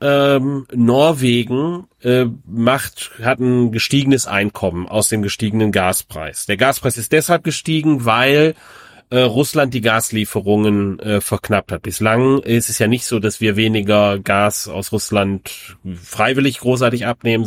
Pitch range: 110-145 Hz